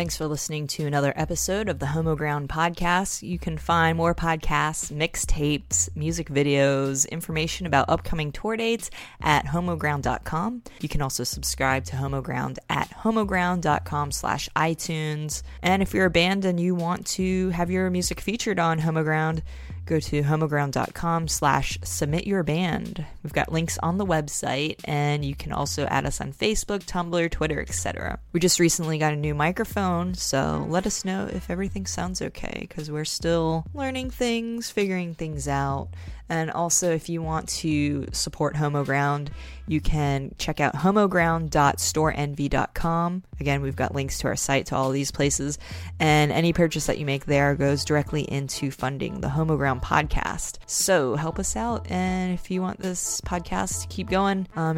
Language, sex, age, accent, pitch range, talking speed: English, female, 20-39, American, 140-175 Hz, 170 wpm